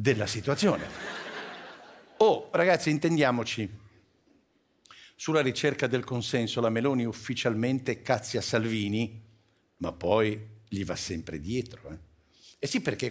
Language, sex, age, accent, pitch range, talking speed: Italian, male, 60-79, native, 120-190 Hz, 120 wpm